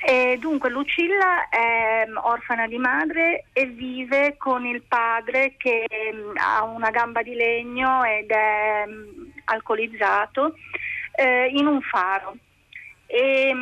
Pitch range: 225-270 Hz